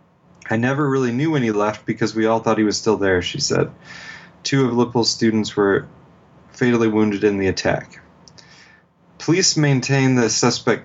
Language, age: English, 30-49